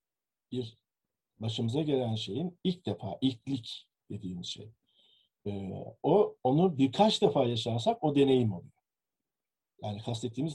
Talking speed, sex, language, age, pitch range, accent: 110 wpm, male, Turkish, 50-69, 105-140 Hz, native